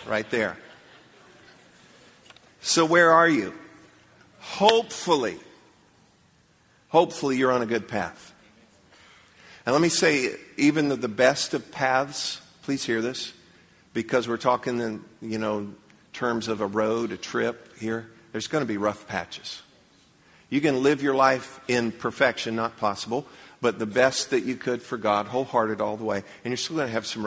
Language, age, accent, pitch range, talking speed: English, 50-69, American, 110-135 Hz, 160 wpm